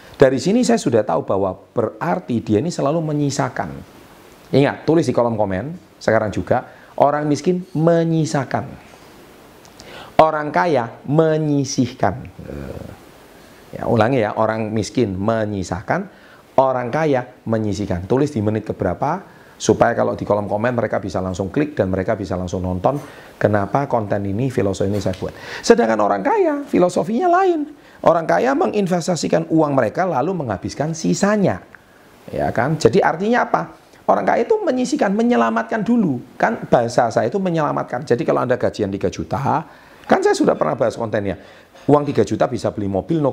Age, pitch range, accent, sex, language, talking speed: 40-59, 105-175 Hz, native, male, Indonesian, 145 wpm